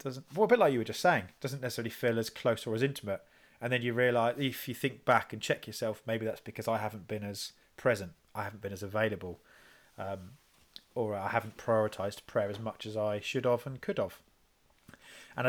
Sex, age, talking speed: male, 20-39, 220 wpm